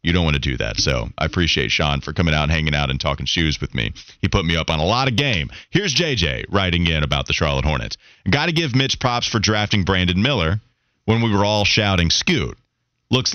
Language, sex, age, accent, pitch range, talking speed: English, male, 30-49, American, 90-140 Hz, 245 wpm